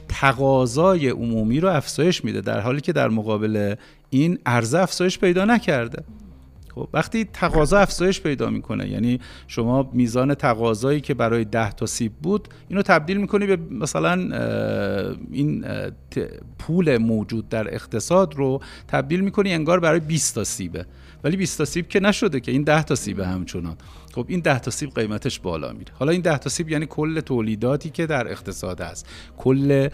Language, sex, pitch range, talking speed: Persian, male, 95-155 Hz, 160 wpm